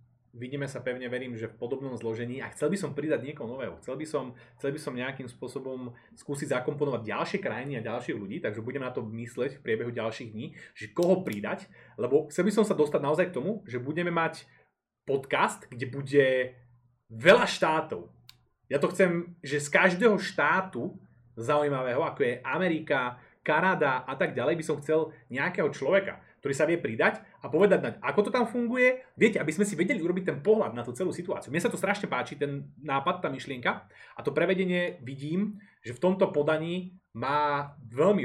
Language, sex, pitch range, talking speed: Slovak, male, 120-165 Hz, 185 wpm